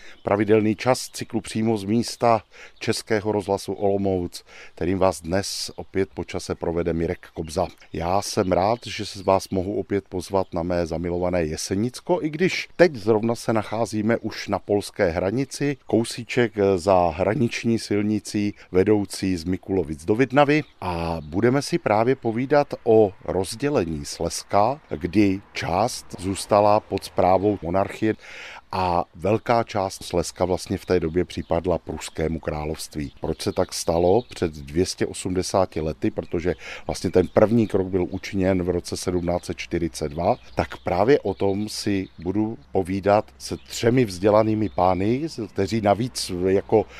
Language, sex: Czech, male